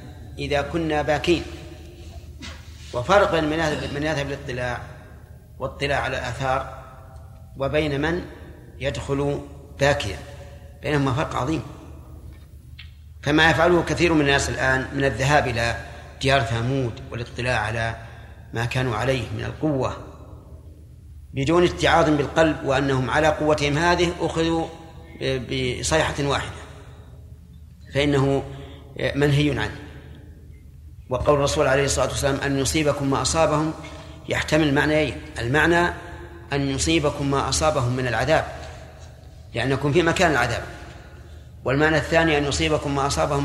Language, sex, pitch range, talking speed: Arabic, male, 100-145 Hz, 105 wpm